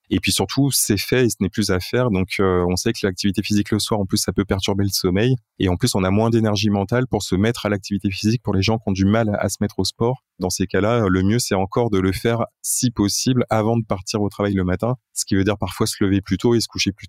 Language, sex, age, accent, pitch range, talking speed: French, male, 20-39, French, 95-115 Hz, 305 wpm